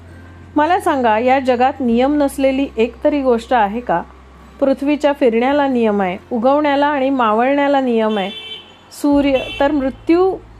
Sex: female